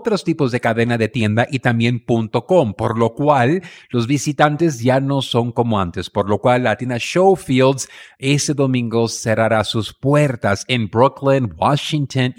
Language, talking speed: Spanish, 155 wpm